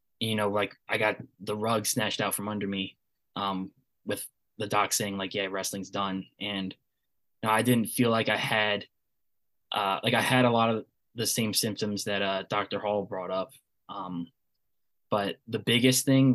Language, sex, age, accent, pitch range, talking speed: English, male, 10-29, American, 100-110 Hz, 180 wpm